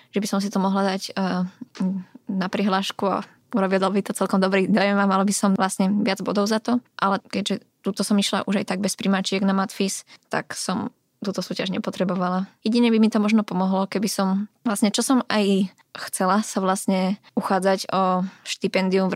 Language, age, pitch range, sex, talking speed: Slovak, 20-39, 190-210 Hz, female, 195 wpm